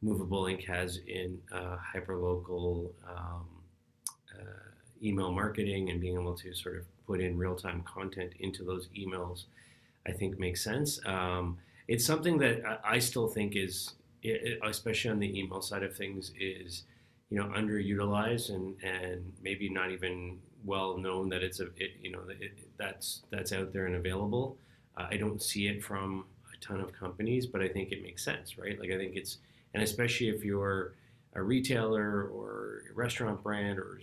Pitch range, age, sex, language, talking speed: 90-110 Hz, 30-49, male, English, 175 wpm